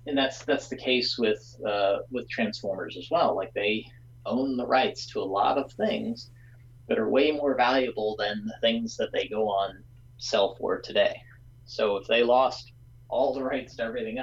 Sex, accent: male, American